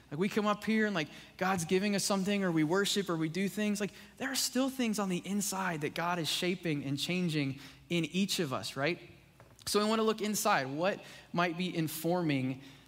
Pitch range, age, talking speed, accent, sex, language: 145-190 Hz, 20-39, 220 wpm, American, male, English